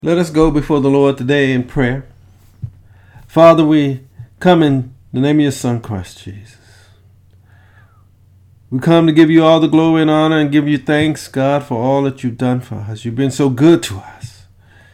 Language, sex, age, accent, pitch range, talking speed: English, male, 50-69, American, 105-160 Hz, 195 wpm